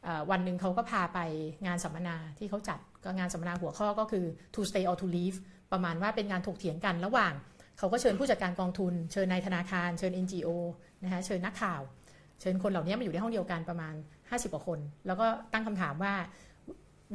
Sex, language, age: female, Thai, 60-79